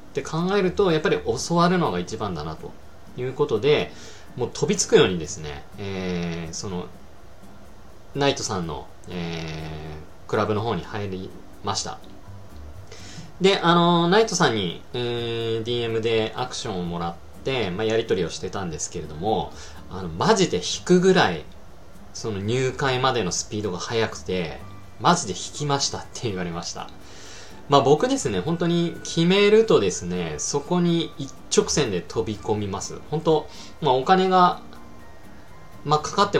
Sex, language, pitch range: male, Japanese, 95-150 Hz